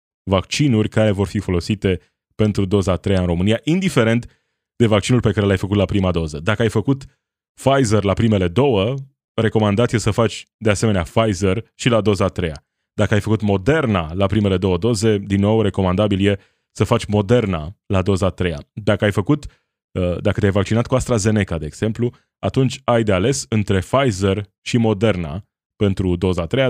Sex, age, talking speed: male, 20-39, 175 wpm